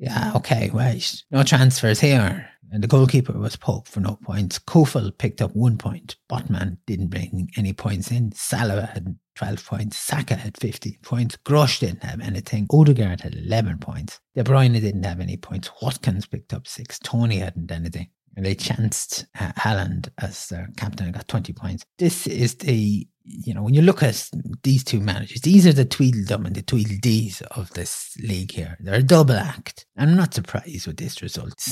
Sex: male